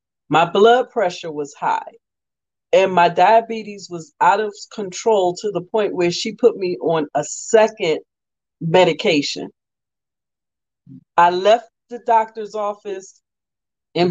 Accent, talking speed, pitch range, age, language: American, 125 wpm, 175-230 Hz, 40-59, English